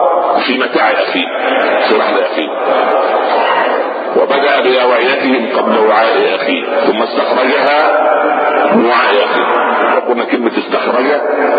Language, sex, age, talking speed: Arabic, male, 50-69, 85 wpm